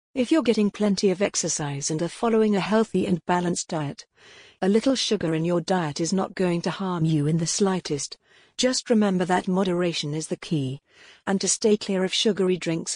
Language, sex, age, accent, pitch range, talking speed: English, female, 40-59, British, 165-200 Hz, 200 wpm